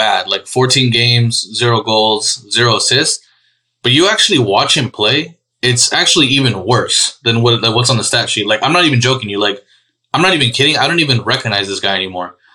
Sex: male